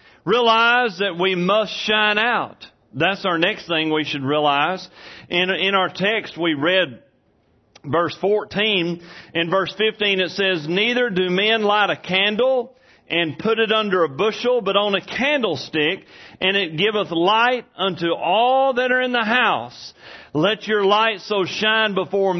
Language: English